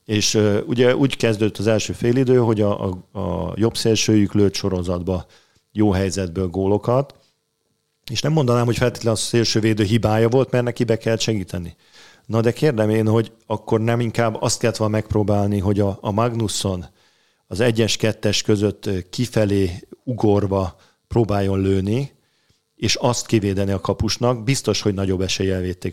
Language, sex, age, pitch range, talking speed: Hungarian, male, 50-69, 95-115 Hz, 155 wpm